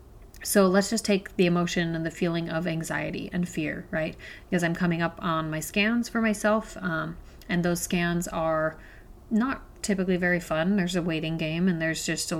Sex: female